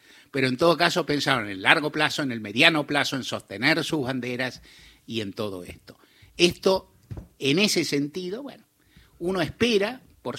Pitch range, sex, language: 120-165 Hz, male, Spanish